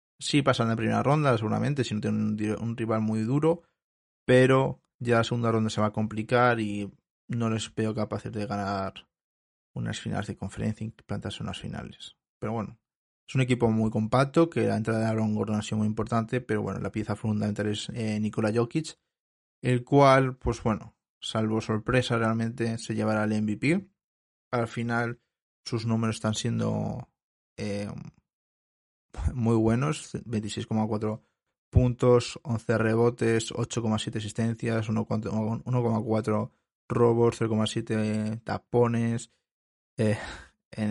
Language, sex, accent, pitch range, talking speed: Spanish, male, Spanish, 110-120 Hz, 140 wpm